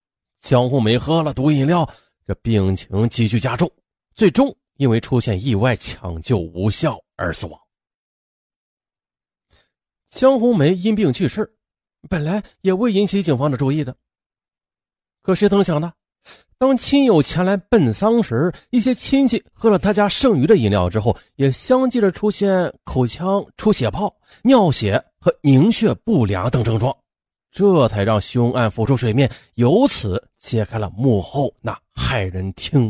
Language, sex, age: Chinese, male, 30-49